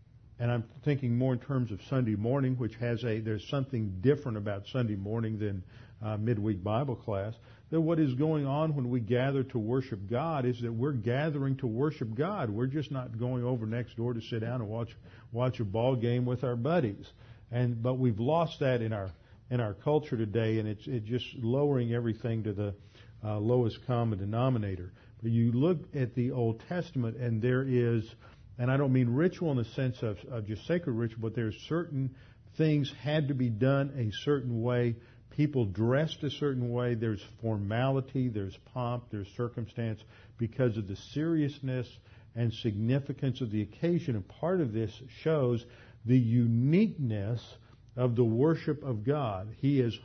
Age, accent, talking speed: 50-69, American, 190 wpm